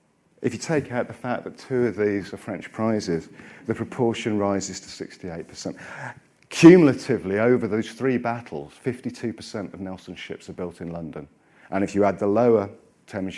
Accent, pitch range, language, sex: British, 95-120 Hz, English, male